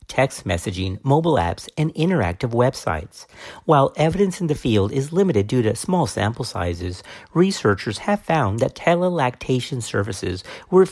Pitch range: 100-155 Hz